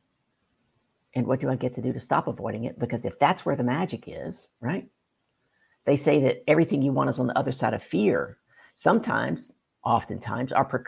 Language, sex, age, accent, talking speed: English, female, 60-79, American, 190 wpm